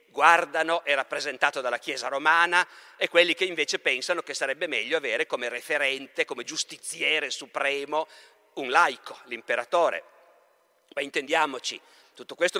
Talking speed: 130 wpm